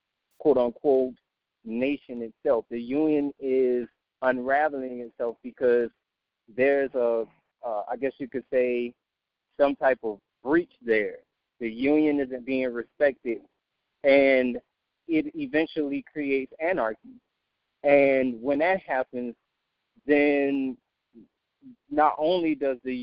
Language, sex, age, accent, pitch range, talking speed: English, male, 30-49, American, 125-150 Hz, 105 wpm